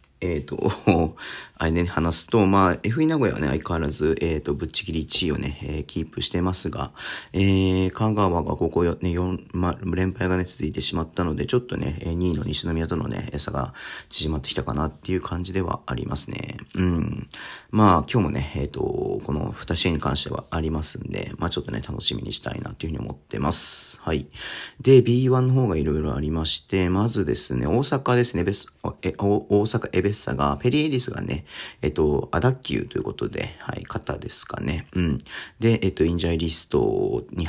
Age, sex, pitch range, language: 40-59, male, 80-100 Hz, Japanese